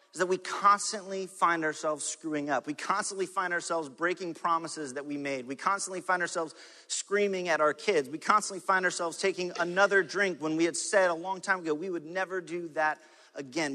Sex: male